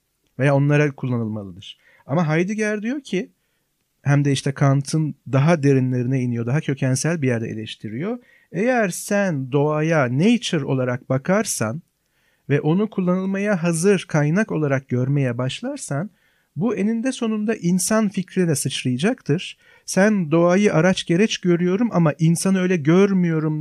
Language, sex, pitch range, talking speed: Turkish, male, 135-190 Hz, 125 wpm